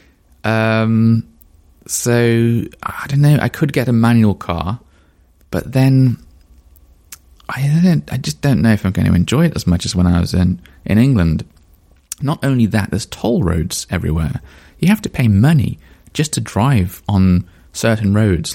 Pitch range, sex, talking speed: 80-115 Hz, male, 170 wpm